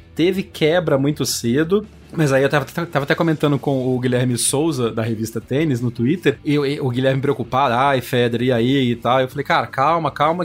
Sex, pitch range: male, 125-160 Hz